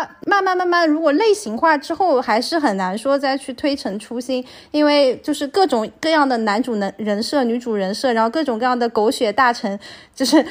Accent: native